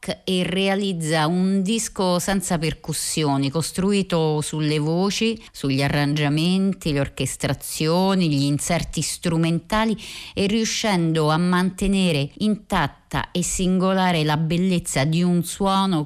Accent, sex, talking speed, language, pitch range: native, female, 105 wpm, Italian, 145-180 Hz